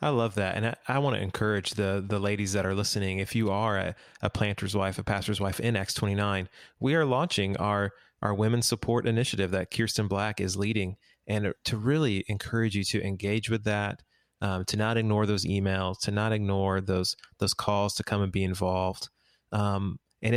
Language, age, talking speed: English, 30-49, 205 wpm